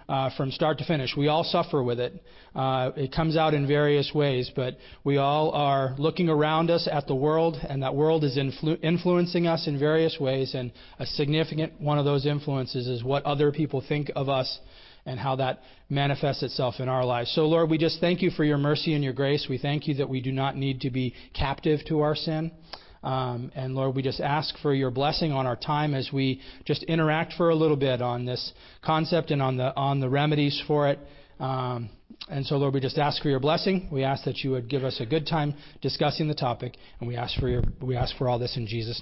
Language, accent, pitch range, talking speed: English, American, 130-160 Hz, 230 wpm